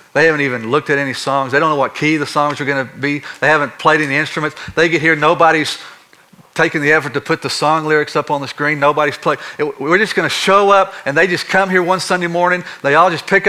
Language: English